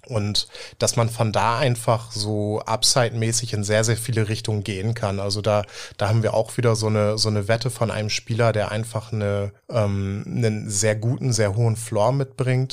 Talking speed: 195 wpm